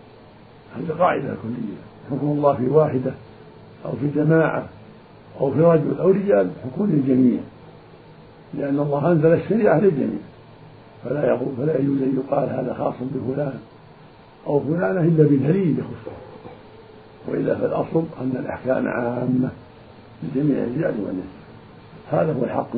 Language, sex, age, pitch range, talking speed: Arabic, male, 50-69, 125-155 Hz, 120 wpm